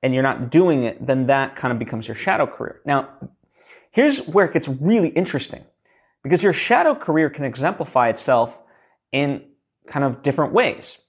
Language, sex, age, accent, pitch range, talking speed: English, male, 20-39, American, 120-155 Hz, 175 wpm